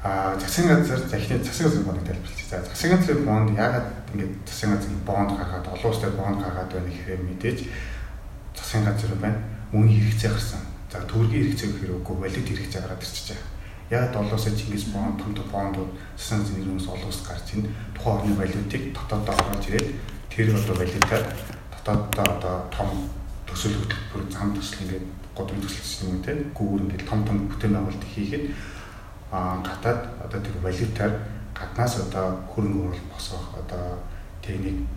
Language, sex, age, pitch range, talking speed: Russian, male, 30-49, 95-110 Hz, 120 wpm